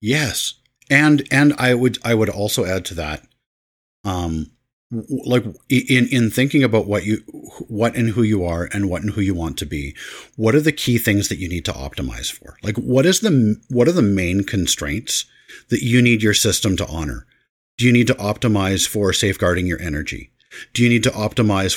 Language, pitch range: English, 90-115 Hz